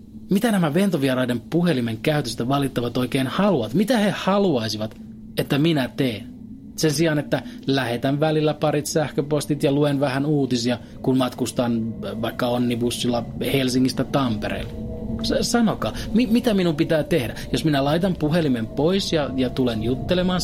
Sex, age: male, 30-49